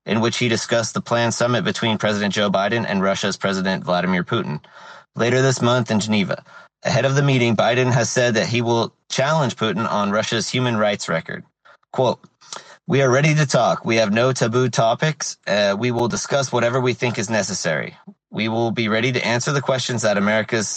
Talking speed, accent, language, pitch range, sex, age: 195 wpm, American, English, 105-130 Hz, male, 30-49